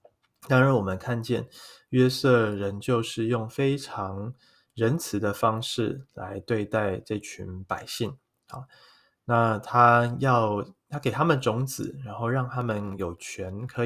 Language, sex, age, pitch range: Chinese, male, 20-39, 105-125 Hz